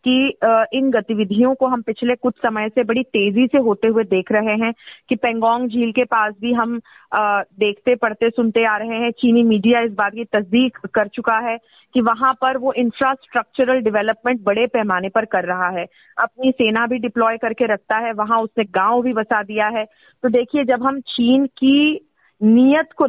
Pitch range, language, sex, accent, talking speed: 220-260 Hz, Hindi, female, native, 195 wpm